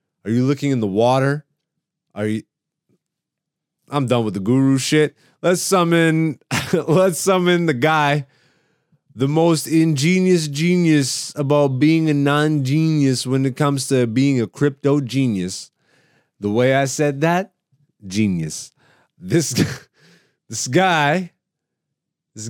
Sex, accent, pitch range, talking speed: male, American, 130-165 Hz, 125 wpm